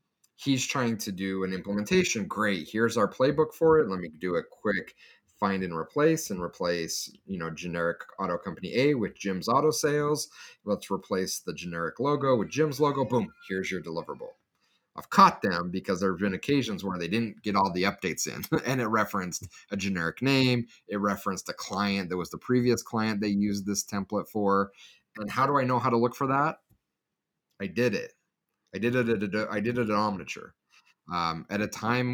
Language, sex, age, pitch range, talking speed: English, male, 30-49, 90-120 Hz, 200 wpm